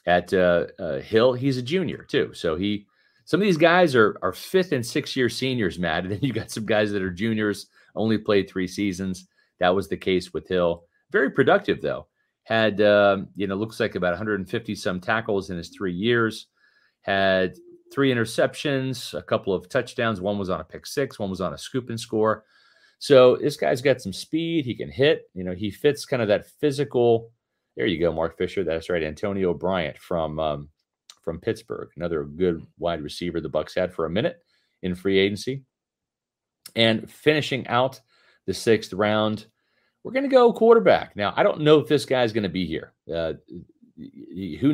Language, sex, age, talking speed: English, male, 40-59, 190 wpm